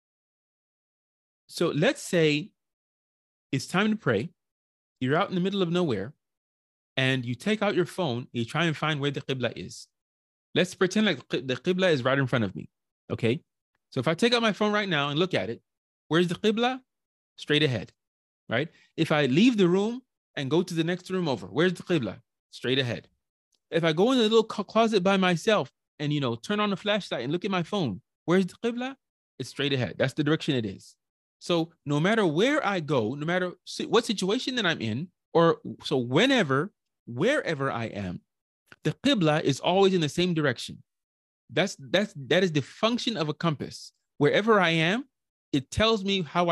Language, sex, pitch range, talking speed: English, male, 130-190 Hz, 195 wpm